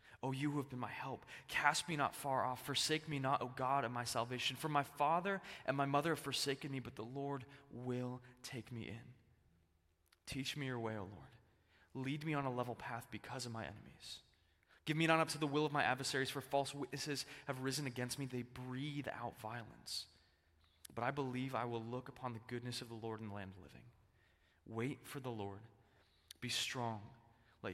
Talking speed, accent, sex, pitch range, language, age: 220 wpm, American, male, 110-145 Hz, English, 20-39